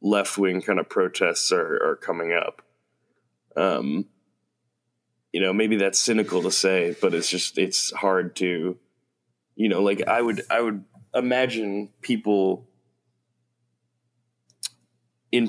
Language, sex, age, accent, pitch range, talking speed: English, male, 20-39, American, 95-120 Hz, 125 wpm